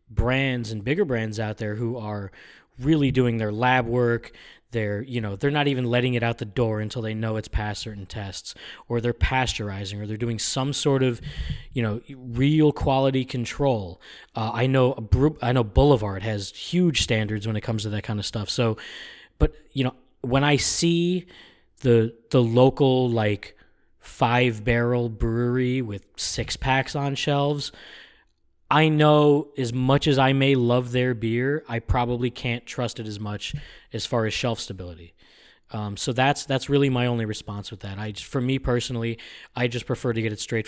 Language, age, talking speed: English, 20-39, 185 wpm